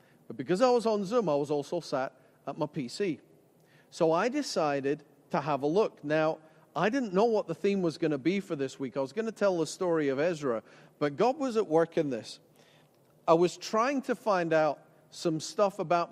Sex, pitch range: male, 145-185 Hz